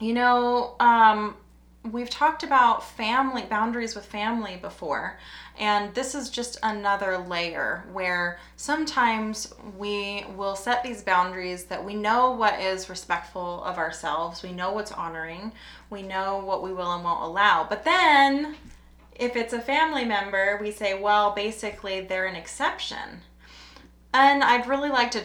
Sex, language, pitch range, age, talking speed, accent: female, English, 180-225 Hz, 20-39, 150 wpm, American